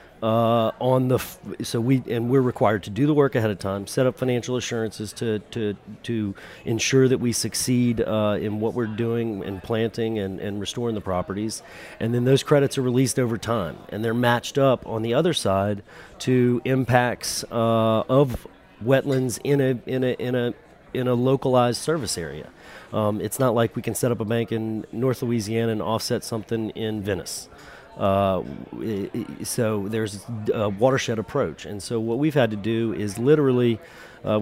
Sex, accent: male, American